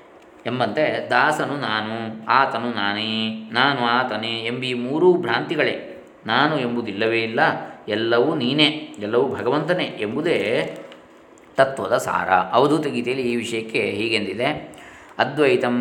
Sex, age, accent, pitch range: male, 20-39, native, 110-130 Hz